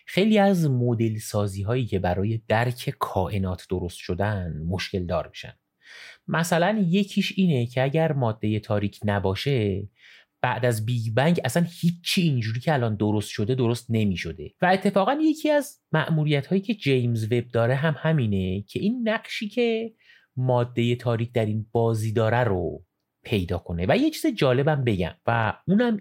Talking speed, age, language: 155 wpm, 30-49, Persian